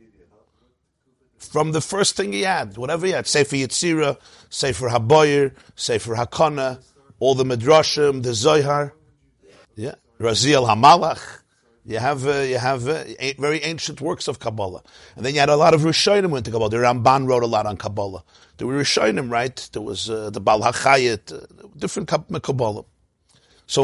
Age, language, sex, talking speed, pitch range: 50-69, English, male, 175 wpm, 130-180 Hz